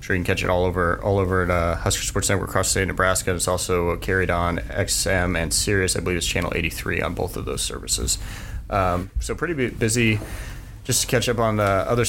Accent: American